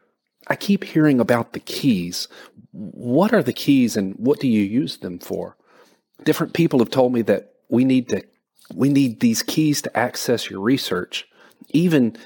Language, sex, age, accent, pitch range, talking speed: English, male, 40-59, American, 105-145 Hz, 170 wpm